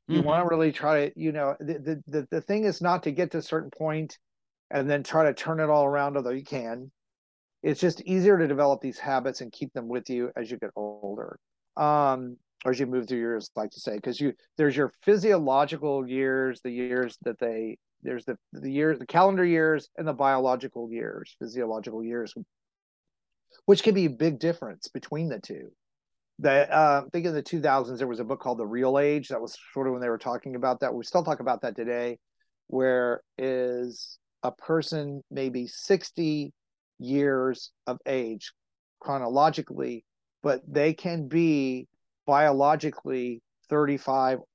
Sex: male